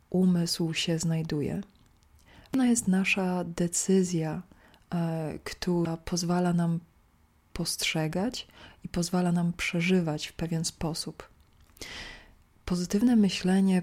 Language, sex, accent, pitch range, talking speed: Polish, female, native, 165-185 Hz, 85 wpm